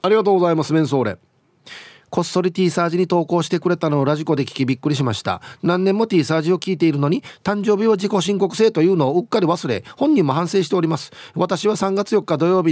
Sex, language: male, Japanese